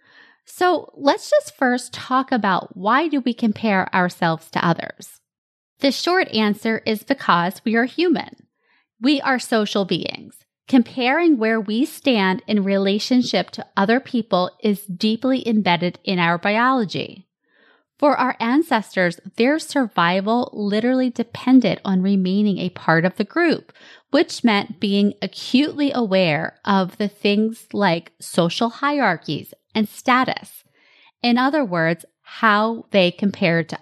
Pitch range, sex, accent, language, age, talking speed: 195-255 Hz, female, American, English, 20-39, 130 wpm